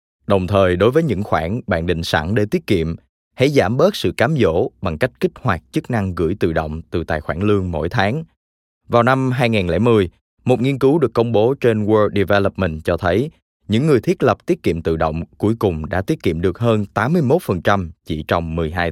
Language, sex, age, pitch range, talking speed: Vietnamese, male, 20-39, 85-115 Hz, 210 wpm